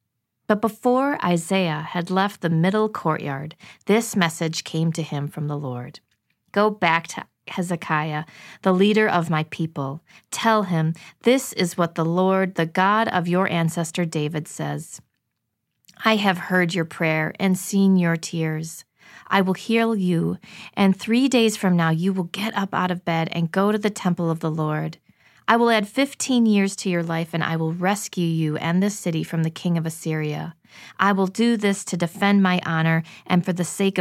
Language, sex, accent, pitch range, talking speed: English, female, American, 160-195 Hz, 185 wpm